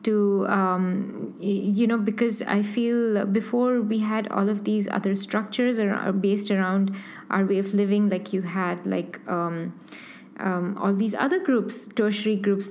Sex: female